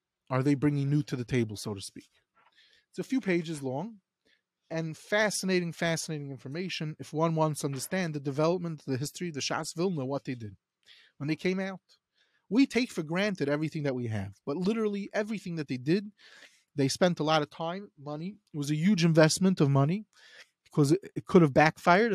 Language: English